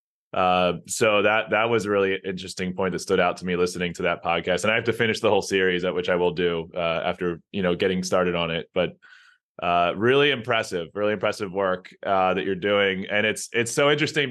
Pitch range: 95-115 Hz